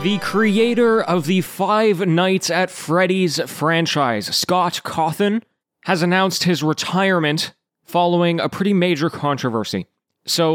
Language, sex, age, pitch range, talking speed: English, male, 20-39, 135-175 Hz, 120 wpm